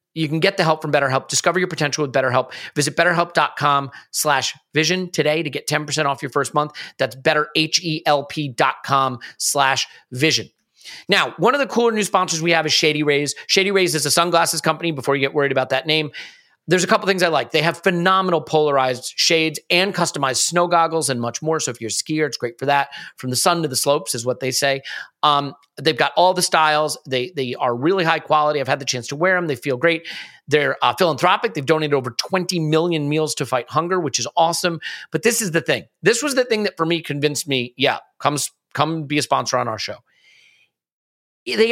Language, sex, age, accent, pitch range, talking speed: English, male, 40-59, American, 145-190 Hz, 215 wpm